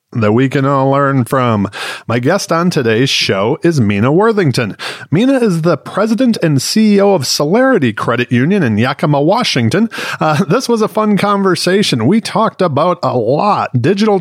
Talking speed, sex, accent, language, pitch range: 165 wpm, male, American, English, 140-195 Hz